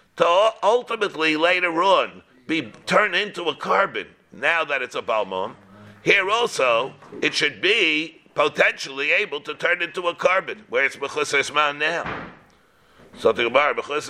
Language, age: English, 60-79